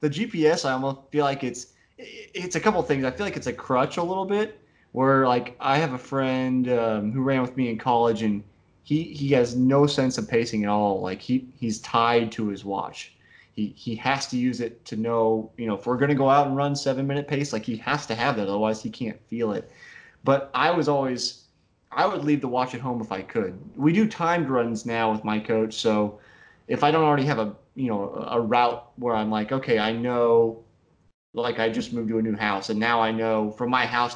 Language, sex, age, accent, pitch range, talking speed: English, male, 20-39, American, 110-135 Hz, 240 wpm